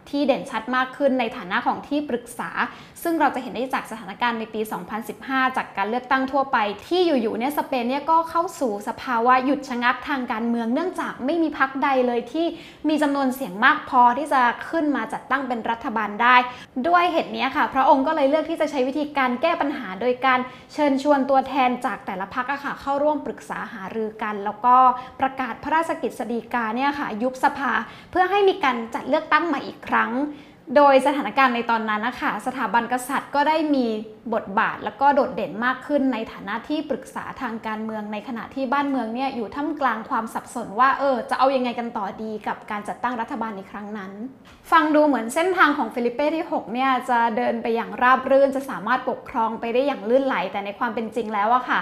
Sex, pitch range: female, 230-280 Hz